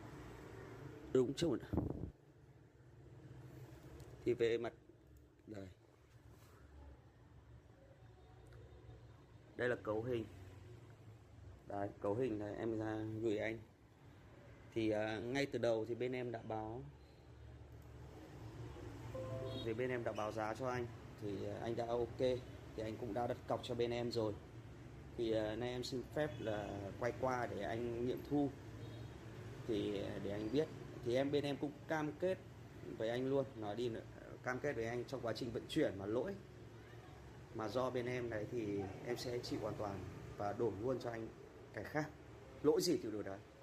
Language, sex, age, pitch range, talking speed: Vietnamese, male, 30-49, 110-125 Hz, 160 wpm